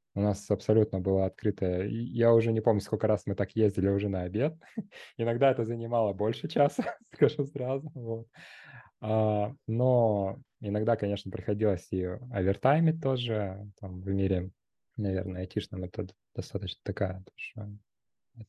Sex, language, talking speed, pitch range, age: male, Russian, 135 wpm, 95-115 Hz, 20-39